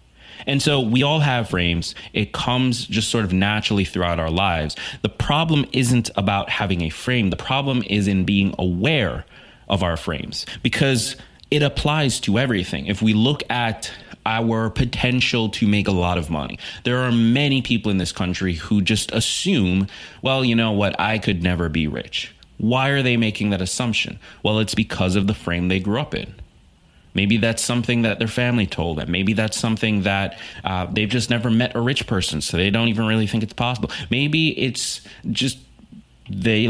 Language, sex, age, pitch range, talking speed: English, male, 30-49, 90-120 Hz, 190 wpm